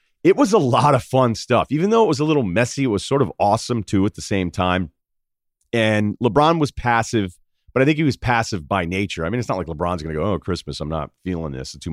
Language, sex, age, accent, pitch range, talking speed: English, male, 40-59, American, 80-115 Hz, 265 wpm